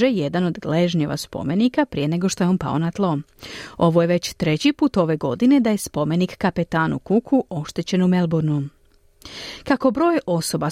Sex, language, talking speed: female, Croatian, 170 wpm